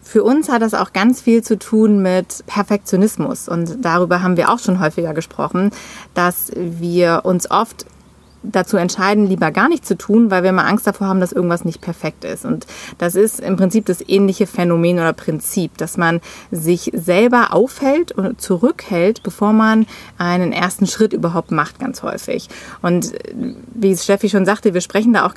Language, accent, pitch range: German, German, 180-220 Hz